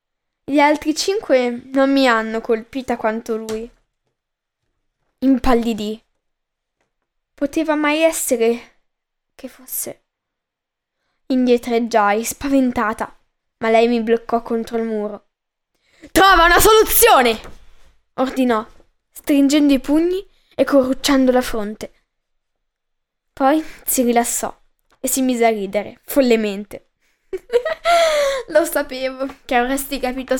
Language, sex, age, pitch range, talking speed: Italian, female, 10-29, 235-295 Hz, 95 wpm